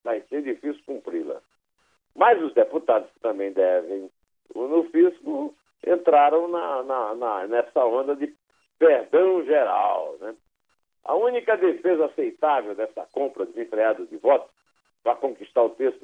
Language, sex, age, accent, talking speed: Portuguese, male, 60-79, Brazilian, 130 wpm